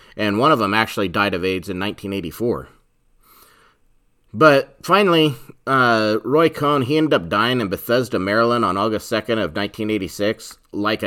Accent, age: American, 30-49